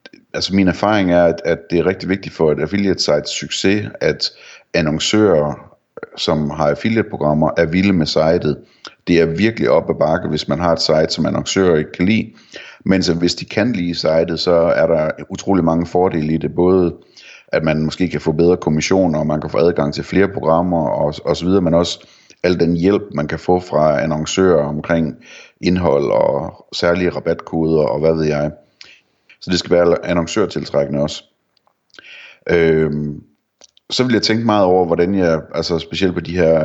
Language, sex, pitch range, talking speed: Danish, male, 80-90 Hz, 185 wpm